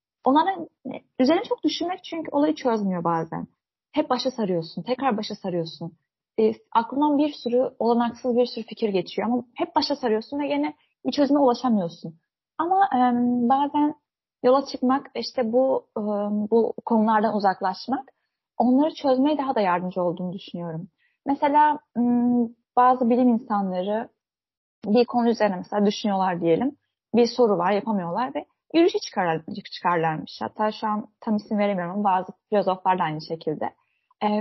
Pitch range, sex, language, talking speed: 195-265 Hz, female, Turkish, 140 wpm